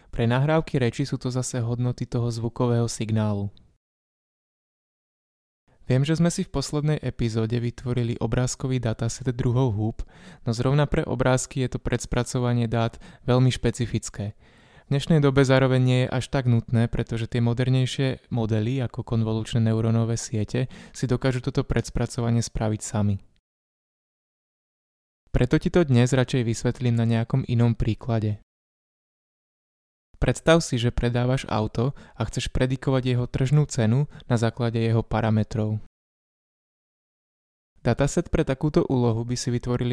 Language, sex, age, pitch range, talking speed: Slovak, male, 20-39, 115-130 Hz, 130 wpm